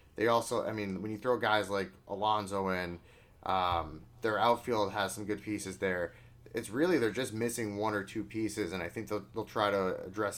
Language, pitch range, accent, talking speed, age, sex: English, 100-115 Hz, American, 210 wpm, 30-49, male